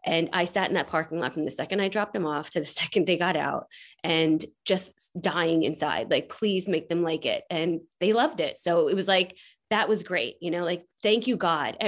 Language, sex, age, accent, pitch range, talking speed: English, female, 20-39, American, 170-225 Hz, 235 wpm